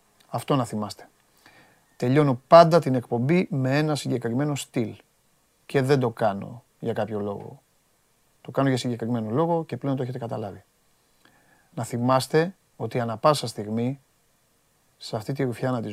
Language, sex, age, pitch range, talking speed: Greek, male, 40-59, 110-140 Hz, 145 wpm